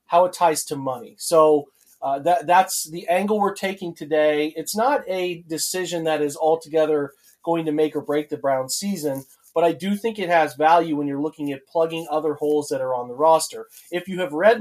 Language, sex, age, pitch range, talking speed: English, male, 30-49, 145-175 Hz, 215 wpm